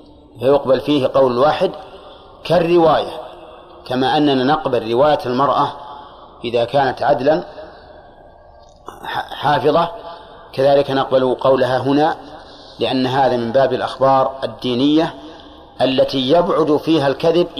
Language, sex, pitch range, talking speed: Arabic, male, 125-150 Hz, 95 wpm